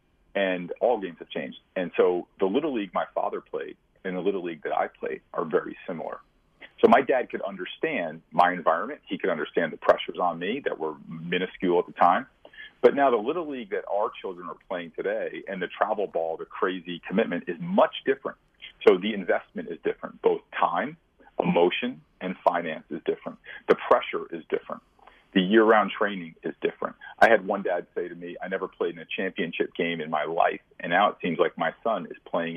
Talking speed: 205 wpm